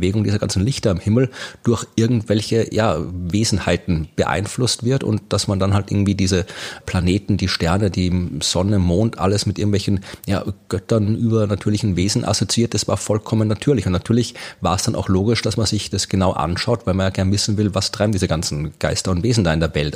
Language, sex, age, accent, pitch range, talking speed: German, male, 30-49, German, 95-110 Hz, 205 wpm